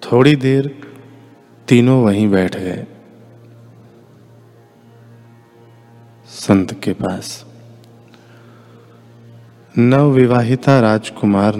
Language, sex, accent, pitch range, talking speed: Hindi, male, native, 105-115 Hz, 55 wpm